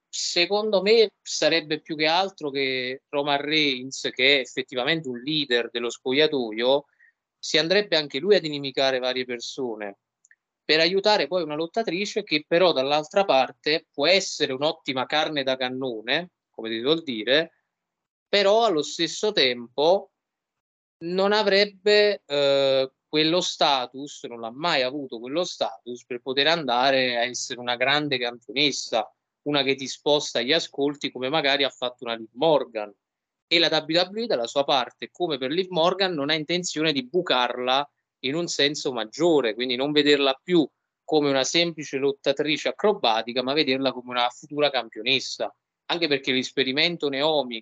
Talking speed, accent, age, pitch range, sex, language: 145 wpm, native, 20-39, 125-160 Hz, male, Italian